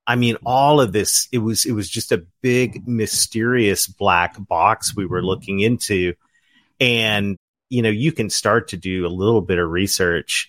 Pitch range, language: 95-120 Hz, English